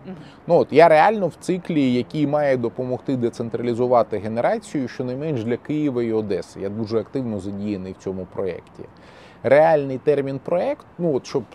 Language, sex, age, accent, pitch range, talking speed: Ukrainian, male, 20-39, native, 110-150 Hz, 130 wpm